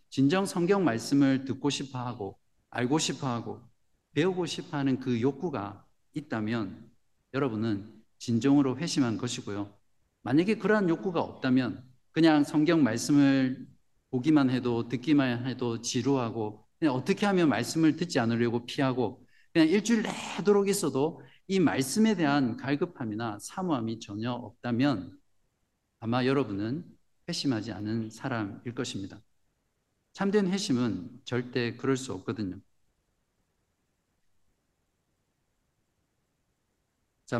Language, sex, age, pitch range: Korean, male, 50-69, 110-150 Hz